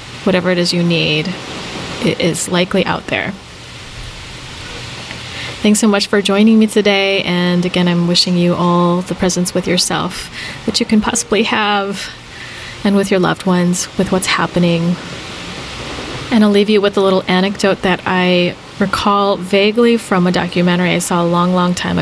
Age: 30-49